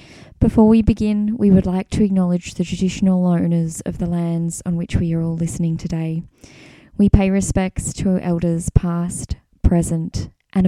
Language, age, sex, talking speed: English, 10-29, female, 165 wpm